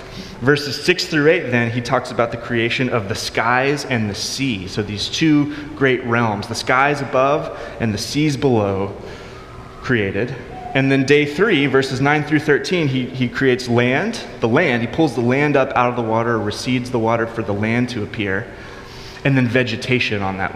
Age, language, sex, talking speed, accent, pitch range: 30-49, English, male, 190 wpm, American, 115-140 Hz